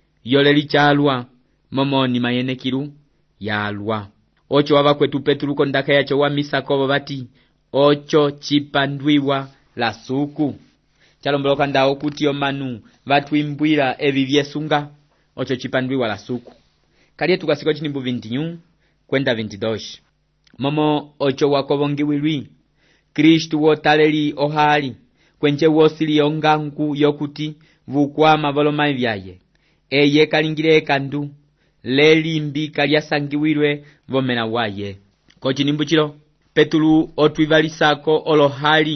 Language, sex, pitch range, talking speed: English, male, 135-150 Hz, 100 wpm